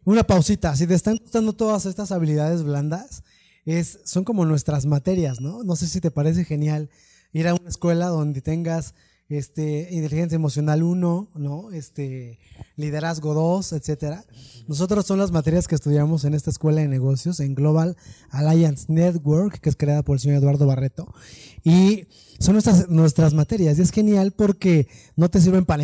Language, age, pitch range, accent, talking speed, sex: Spanish, 20-39, 145-180 Hz, Mexican, 165 wpm, male